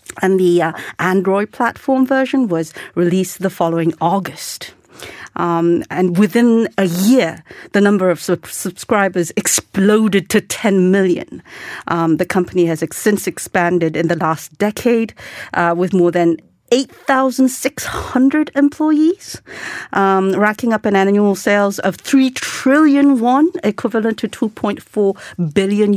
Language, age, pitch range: Korean, 50-69, 175-225 Hz